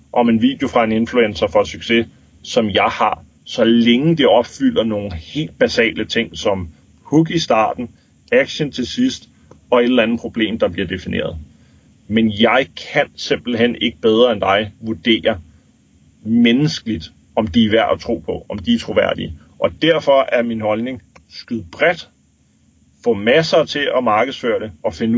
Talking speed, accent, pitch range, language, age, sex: 165 wpm, native, 105-130 Hz, Danish, 30-49, male